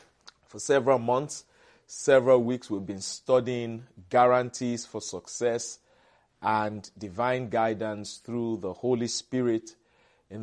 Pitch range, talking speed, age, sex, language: 100-120 Hz, 110 wpm, 40-59, male, English